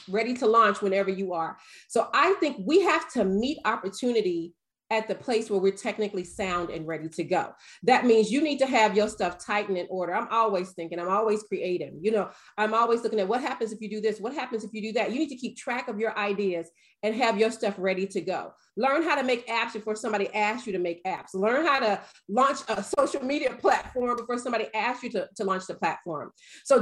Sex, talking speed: female, 235 wpm